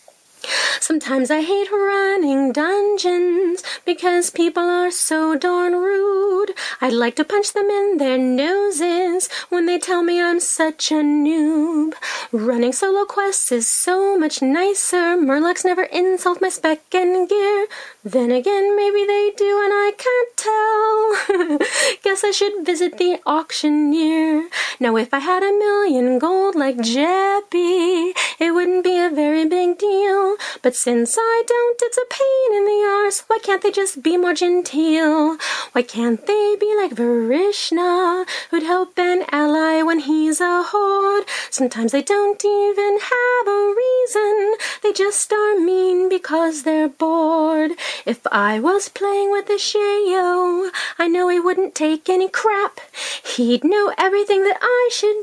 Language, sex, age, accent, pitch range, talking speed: English, female, 30-49, American, 315-410 Hz, 150 wpm